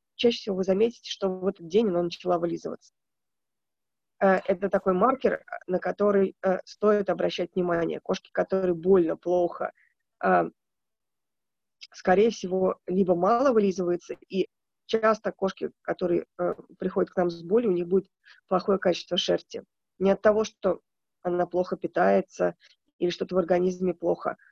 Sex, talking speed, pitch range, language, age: female, 135 wpm, 180-205 Hz, Russian, 20-39